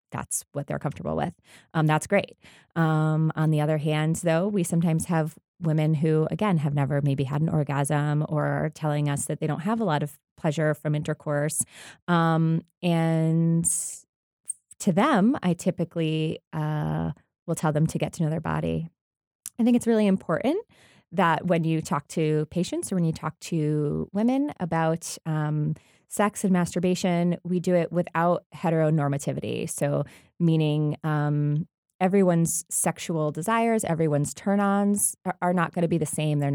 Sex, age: female, 20-39